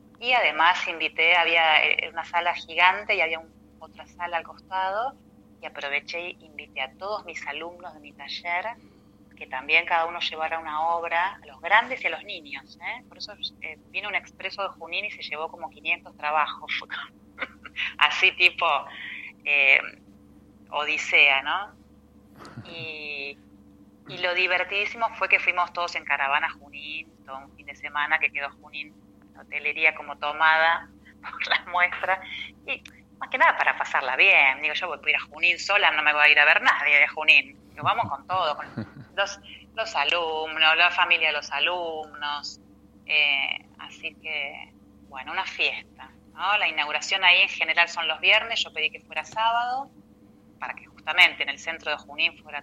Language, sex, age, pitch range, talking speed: Spanish, female, 30-49, 145-180 Hz, 170 wpm